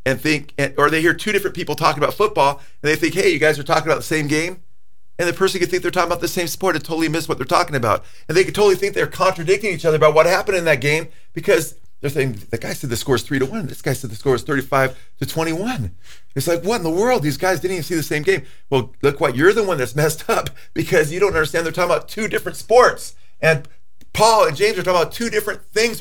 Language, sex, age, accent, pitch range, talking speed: English, male, 40-59, American, 120-175 Hz, 275 wpm